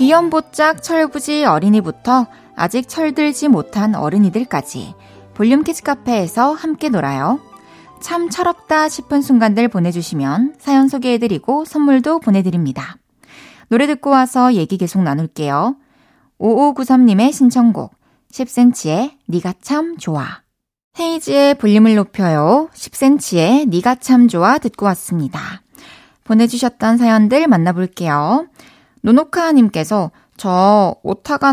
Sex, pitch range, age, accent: female, 190-280 Hz, 20-39, native